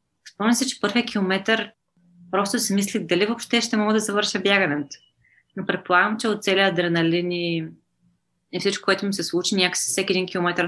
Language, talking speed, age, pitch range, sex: Bulgarian, 170 wpm, 20-39, 160-190 Hz, female